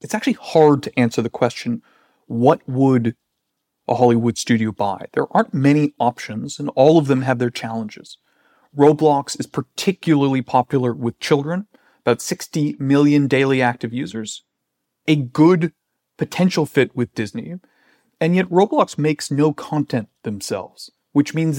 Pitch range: 125-155 Hz